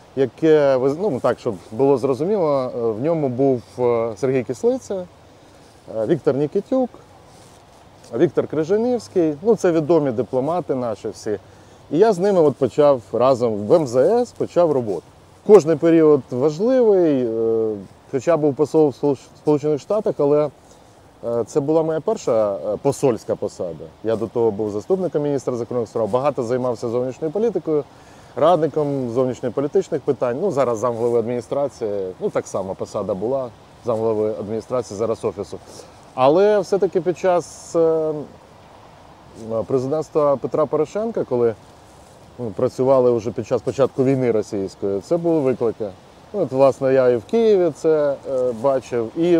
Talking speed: 125 wpm